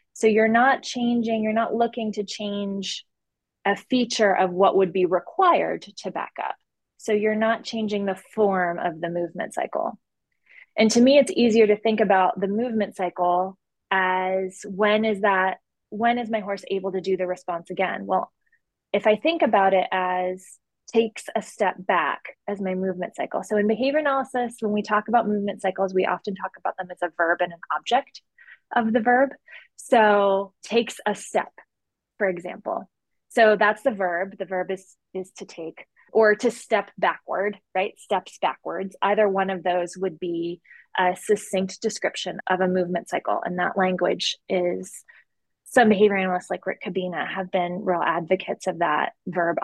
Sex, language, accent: female, English, American